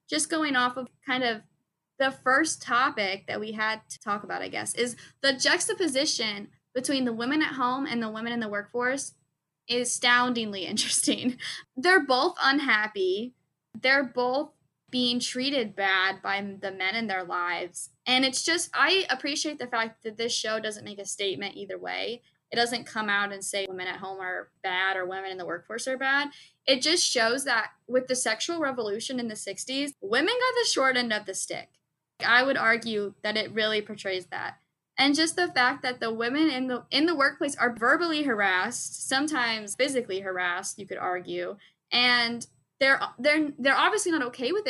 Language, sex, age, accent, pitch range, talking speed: English, female, 10-29, American, 210-275 Hz, 185 wpm